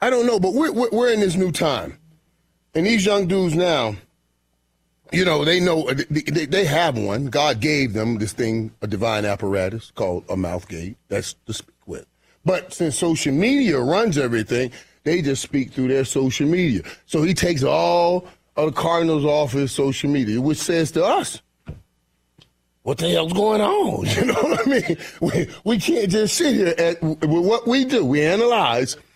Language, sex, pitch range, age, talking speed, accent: English, male, 130-180 Hz, 40-59, 185 wpm, American